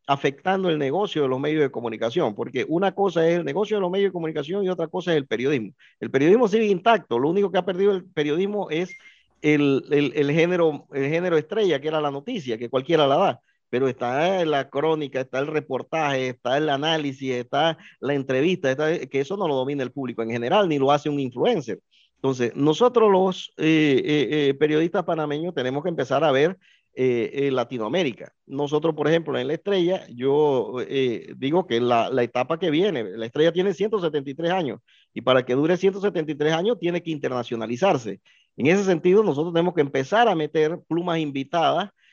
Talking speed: 195 wpm